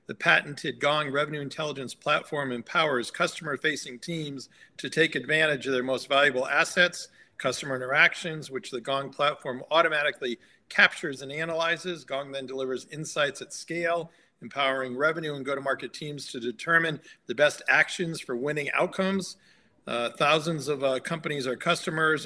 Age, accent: 50-69, American